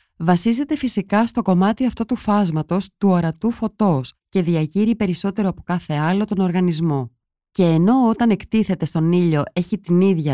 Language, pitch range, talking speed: Greek, 155-215 Hz, 155 wpm